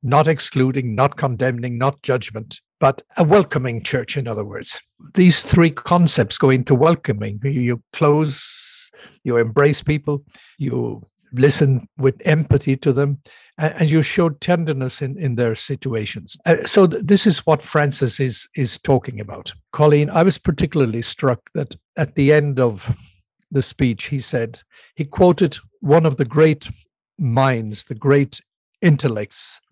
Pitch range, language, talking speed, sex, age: 125-155 Hz, English, 140 wpm, male, 60-79